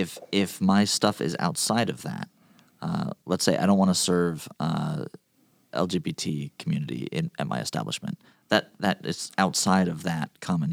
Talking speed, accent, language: 175 wpm, American, English